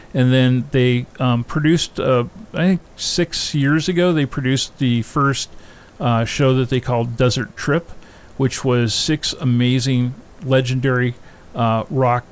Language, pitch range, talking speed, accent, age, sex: English, 115-135 Hz, 140 wpm, American, 50-69, male